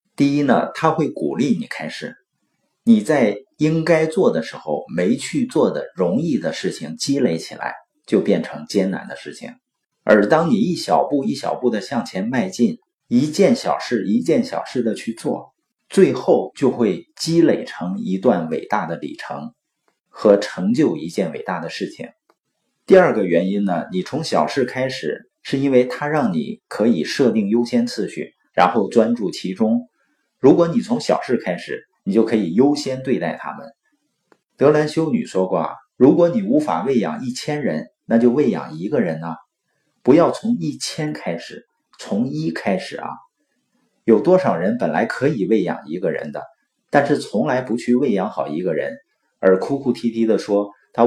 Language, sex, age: Chinese, male, 50-69